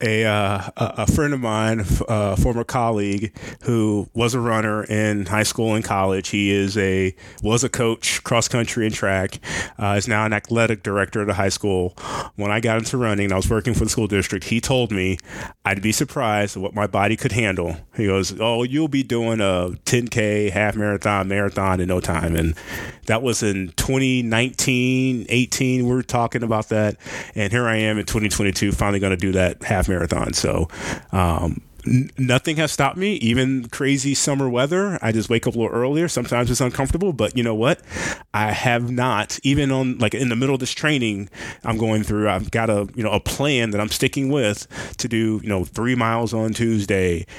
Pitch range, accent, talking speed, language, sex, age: 100-120 Hz, American, 200 wpm, English, male, 30-49